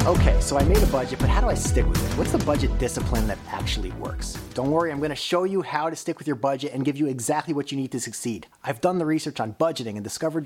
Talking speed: 285 wpm